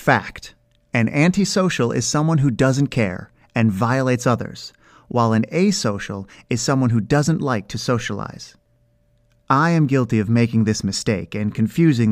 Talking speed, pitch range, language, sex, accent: 150 wpm, 110-145 Hz, English, male, American